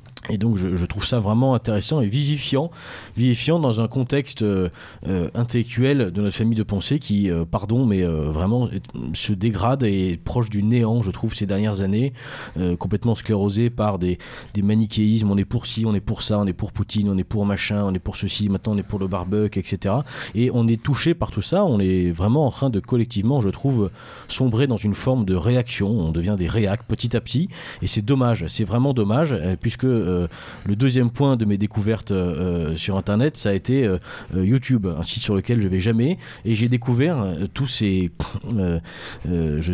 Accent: French